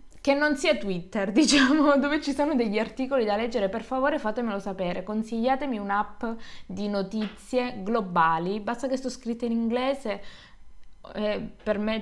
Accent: native